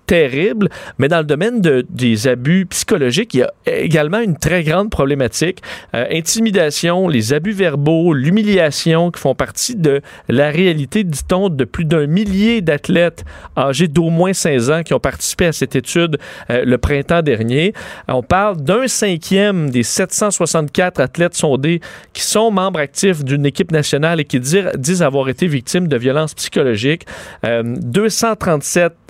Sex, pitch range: male, 140-180 Hz